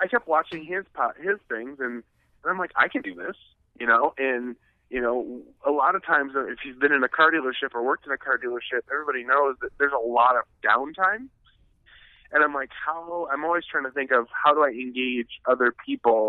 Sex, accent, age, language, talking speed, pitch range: male, American, 30-49, English, 225 wpm, 130-180 Hz